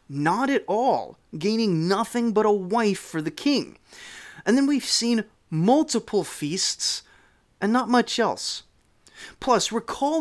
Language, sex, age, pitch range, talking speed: English, male, 30-49, 175-255 Hz, 135 wpm